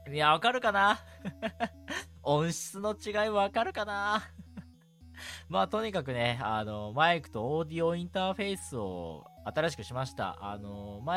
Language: Japanese